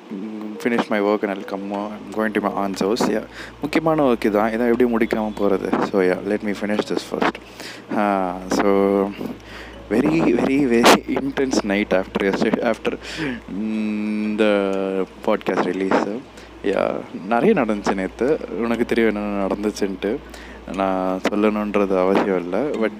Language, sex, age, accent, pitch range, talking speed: English, male, 20-39, Indian, 100-115 Hz, 145 wpm